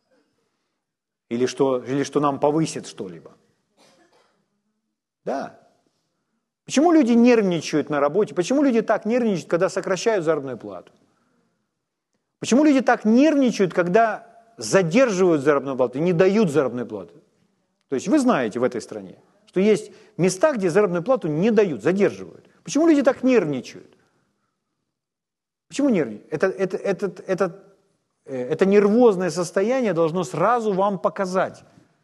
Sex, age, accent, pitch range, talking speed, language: male, 40-59, native, 165-215 Hz, 120 wpm, Ukrainian